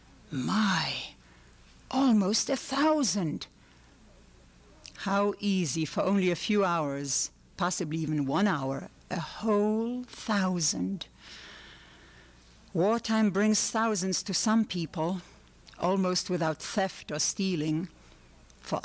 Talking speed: 95 wpm